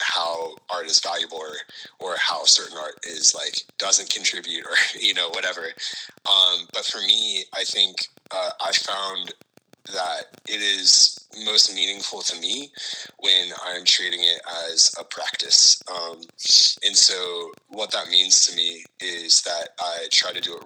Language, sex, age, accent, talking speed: English, male, 30-49, American, 160 wpm